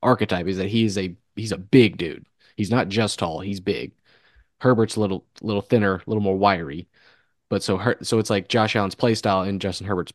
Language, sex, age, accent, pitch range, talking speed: English, male, 20-39, American, 95-115 Hz, 225 wpm